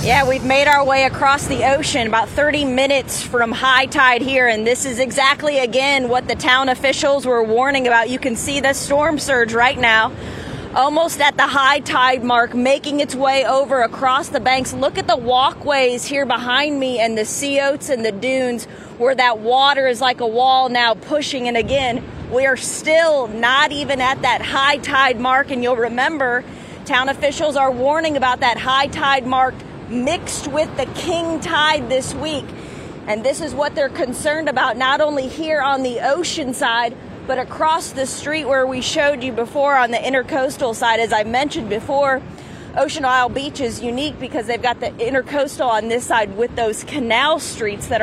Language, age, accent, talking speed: English, 30-49, American, 190 wpm